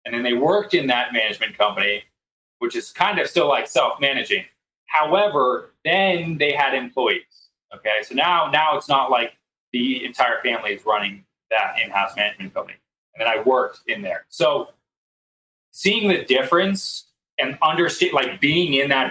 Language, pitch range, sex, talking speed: English, 115-180 Hz, male, 165 wpm